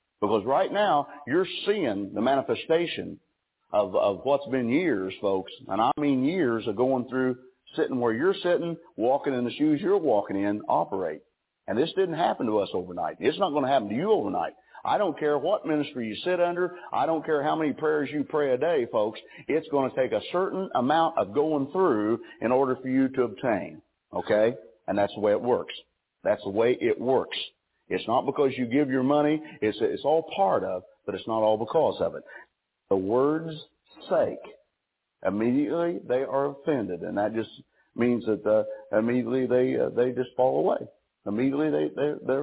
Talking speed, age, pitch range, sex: 195 wpm, 50-69, 125-170 Hz, male